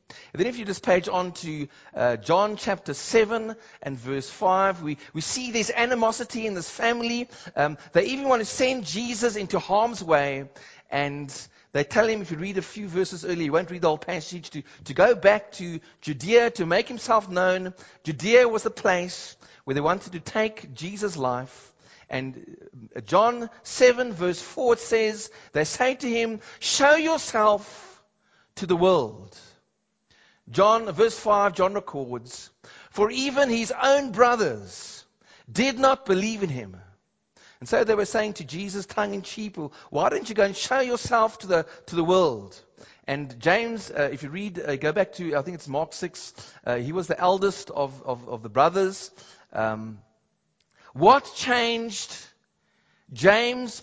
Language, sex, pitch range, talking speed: English, male, 155-225 Hz, 170 wpm